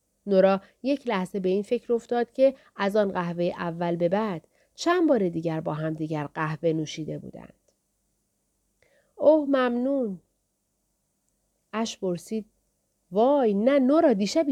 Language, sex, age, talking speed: Persian, female, 40-59, 130 wpm